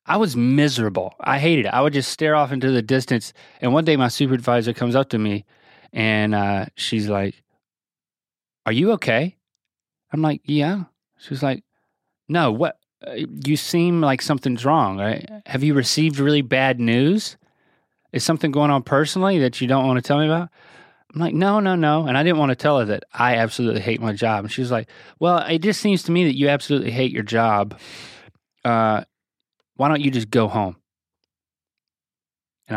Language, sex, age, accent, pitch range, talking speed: English, male, 30-49, American, 115-155 Hz, 190 wpm